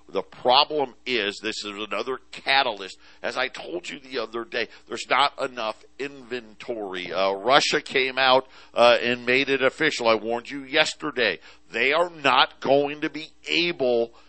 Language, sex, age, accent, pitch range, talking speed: English, male, 50-69, American, 125-160 Hz, 160 wpm